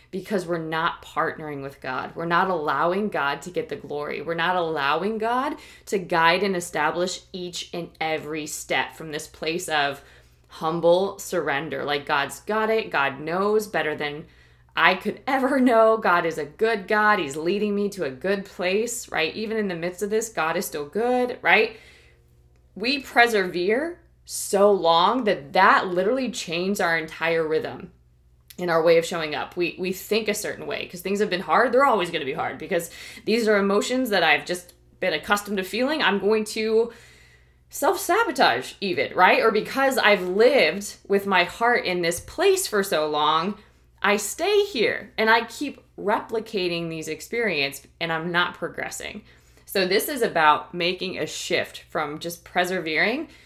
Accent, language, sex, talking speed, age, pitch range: American, English, female, 175 wpm, 20-39, 160-215 Hz